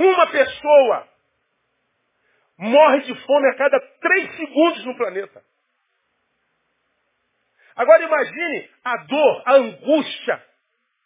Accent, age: Brazilian, 40-59